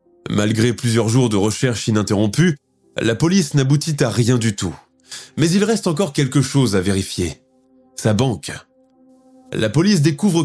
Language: French